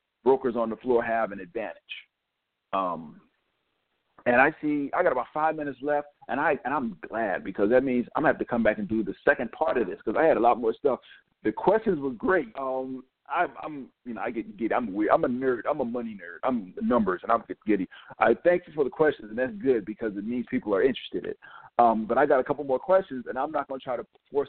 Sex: male